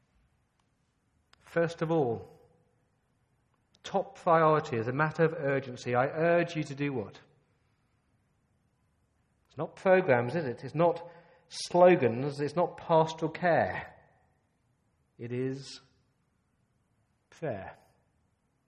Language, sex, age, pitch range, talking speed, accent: English, male, 40-59, 125-170 Hz, 100 wpm, British